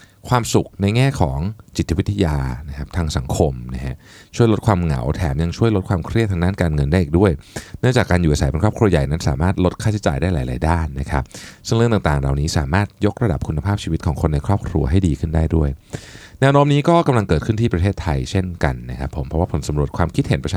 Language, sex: Thai, male